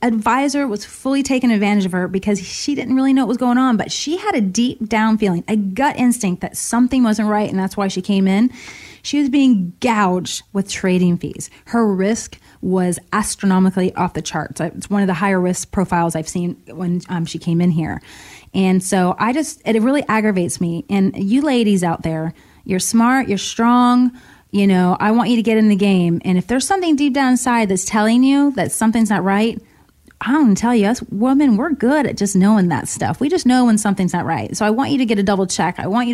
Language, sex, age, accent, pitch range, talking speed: English, female, 30-49, American, 185-240 Hz, 230 wpm